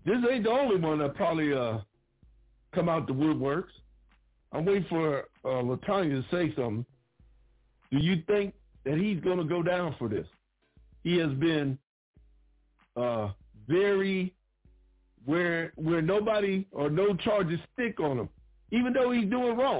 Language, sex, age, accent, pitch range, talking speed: English, male, 60-79, American, 115-180 Hz, 150 wpm